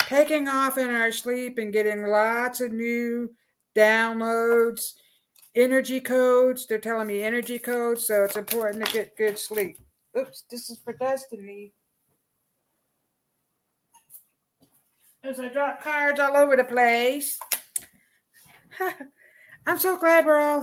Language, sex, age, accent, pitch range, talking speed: English, female, 60-79, American, 205-255 Hz, 125 wpm